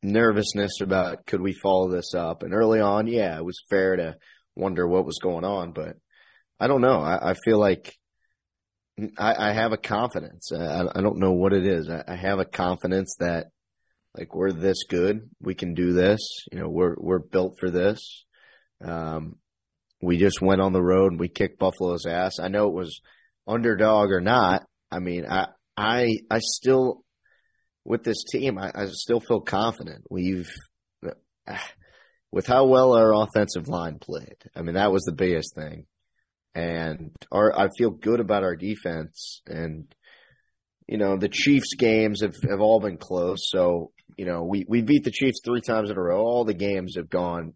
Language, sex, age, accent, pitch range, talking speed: English, male, 30-49, American, 90-110 Hz, 185 wpm